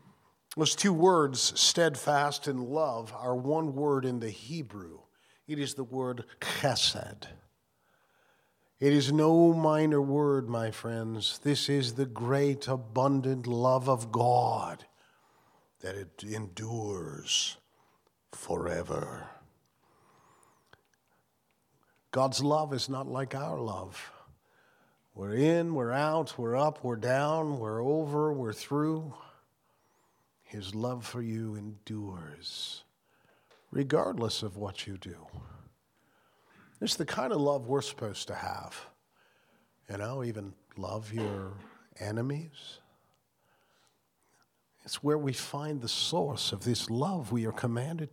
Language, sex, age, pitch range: English, male, 50-69, 115-150 Hz